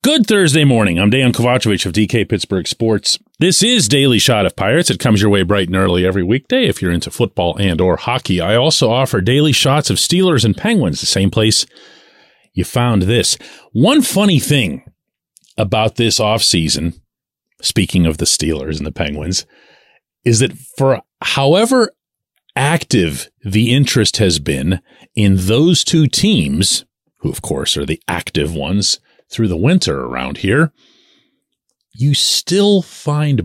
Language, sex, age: English, male, 40-59